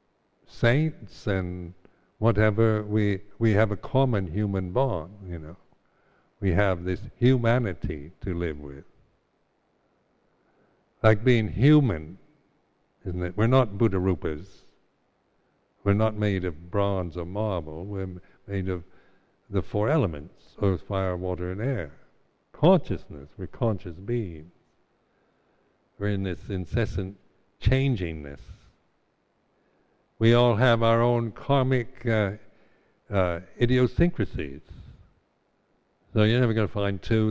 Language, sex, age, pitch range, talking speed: English, male, 60-79, 95-115 Hz, 115 wpm